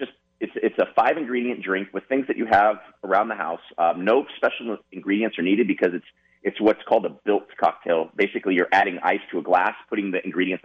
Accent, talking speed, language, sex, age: American, 210 wpm, English, male, 30-49